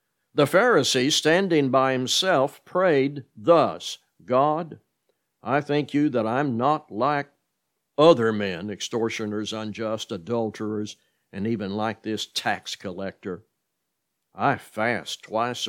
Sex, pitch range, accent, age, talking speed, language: male, 110-145 Hz, American, 60-79, 110 wpm, English